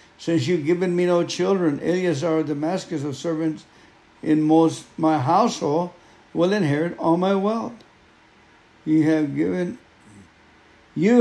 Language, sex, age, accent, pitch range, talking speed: English, male, 60-79, American, 150-175 Hz, 130 wpm